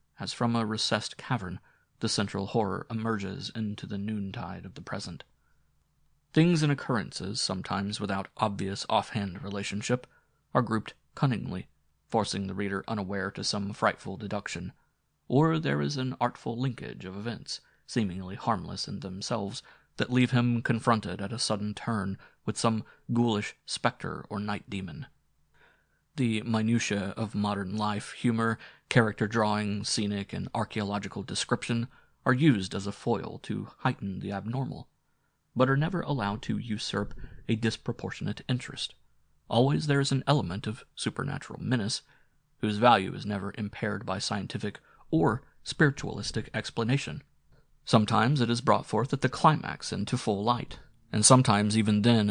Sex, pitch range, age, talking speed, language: male, 100-120 Hz, 30-49, 140 wpm, English